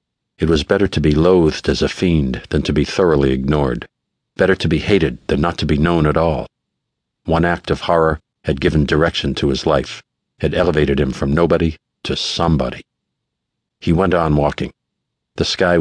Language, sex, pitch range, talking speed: English, male, 75-85 Hz, 180 wpm